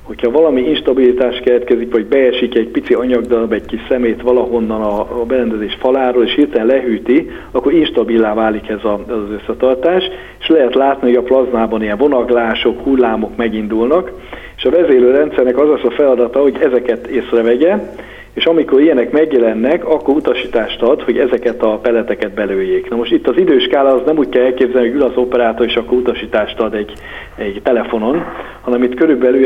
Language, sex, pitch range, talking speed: Hungarian, male, 115-130 Hz, 165 wpm